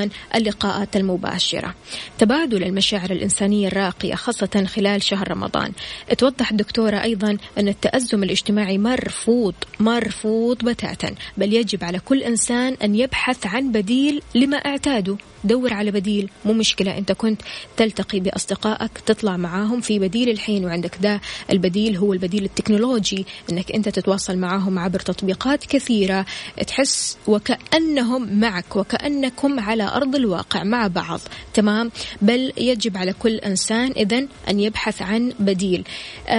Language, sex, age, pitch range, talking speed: Arabic, female, 20-39, 195-240 Hz, 125 wpm